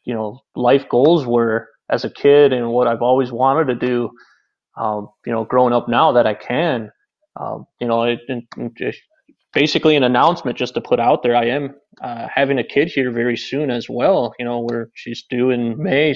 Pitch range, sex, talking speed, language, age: 115-135 Hz, male, 195 wpm, English, 20-39